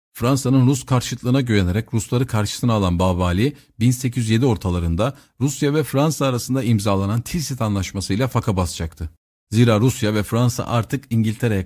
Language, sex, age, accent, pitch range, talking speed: Turkish, male, 50-69, native, 95-125 Hz, 135 wpm